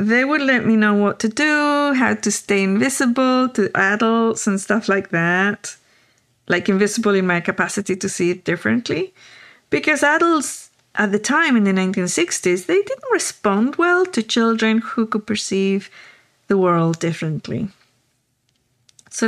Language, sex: English, female